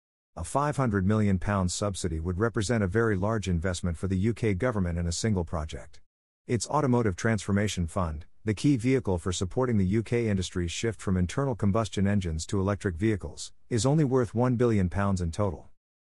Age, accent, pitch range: 50-69, American, 90-115 Hz